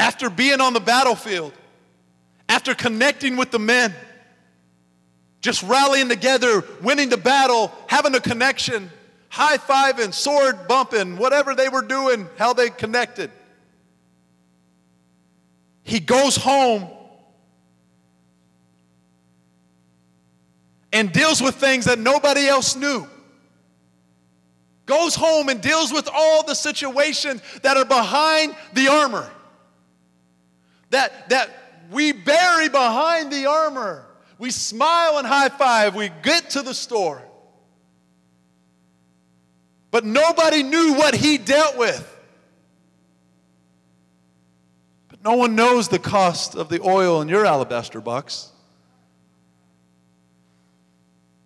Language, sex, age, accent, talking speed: English, male, 40-59, American, 105 wpm